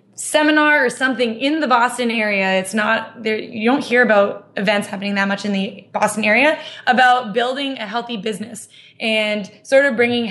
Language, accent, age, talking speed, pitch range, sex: English, American, 20-39, 180 wpm, 205-245 Hz, female